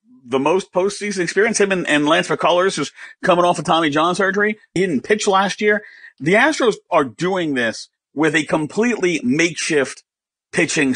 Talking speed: 170 wpm